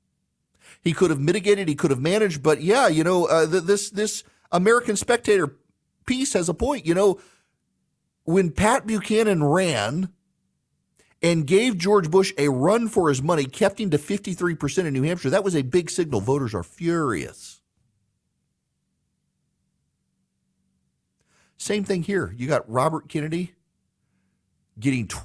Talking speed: 145 wpm